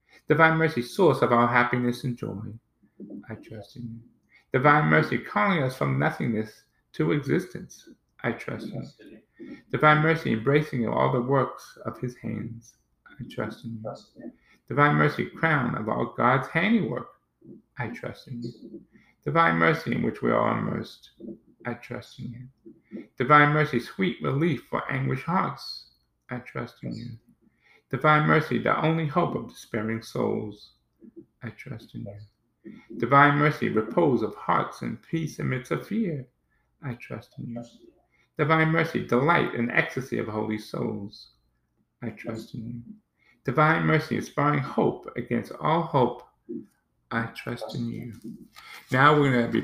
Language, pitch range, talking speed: English, 110-145 Hz, 150 wpm